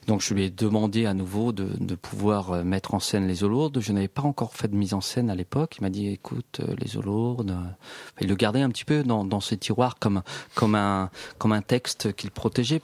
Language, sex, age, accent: French, male, 40-59, French